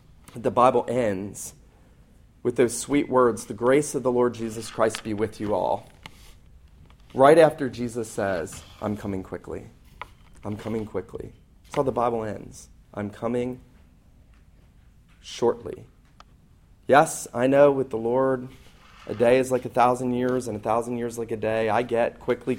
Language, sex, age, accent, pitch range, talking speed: English, male, 30-49, American, 110-130 Hz, 155 wpm